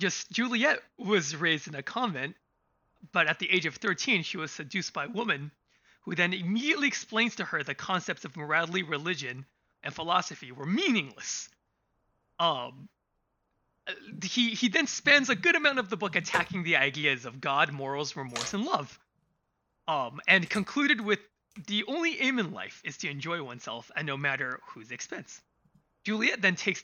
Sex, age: male, 20-39